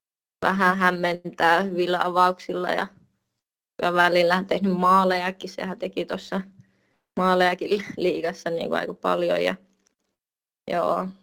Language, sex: Finnish, female